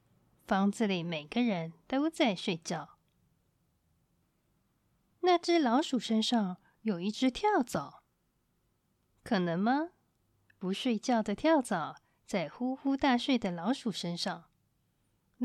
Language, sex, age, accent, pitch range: Chinese, female, 20-39, native, 190-275 Hz